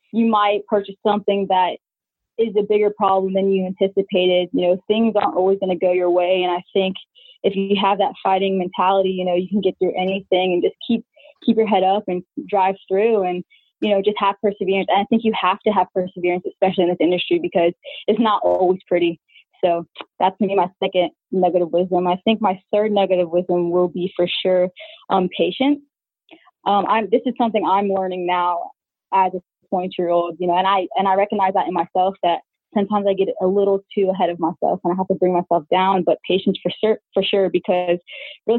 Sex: female